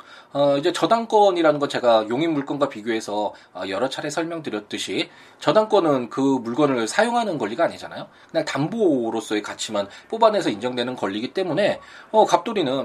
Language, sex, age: Korean, male, 20-39